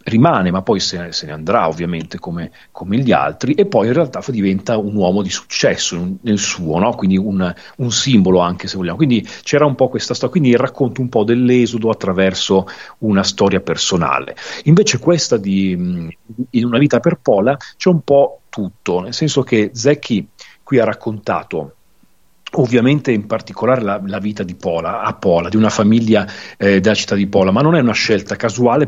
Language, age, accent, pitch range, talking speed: Italian, 40-59, native, 95-120 Hz, 180 wpm